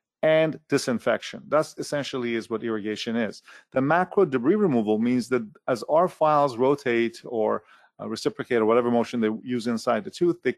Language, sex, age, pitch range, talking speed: English, male, 40-59, 115-140 Hz, 170 wpm